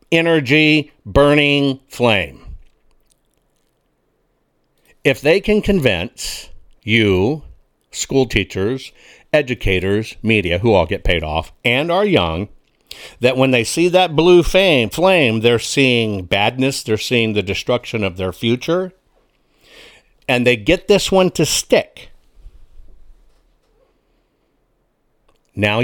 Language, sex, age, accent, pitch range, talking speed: English, male, 60-79, American, 110-160 Hz, 100 wpm